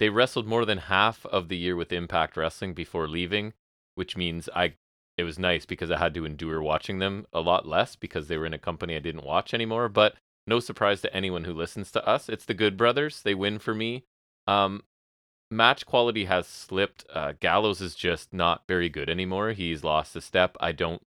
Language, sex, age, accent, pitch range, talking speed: English, male, 30-49, American, 85-105 Hz, 215 wpm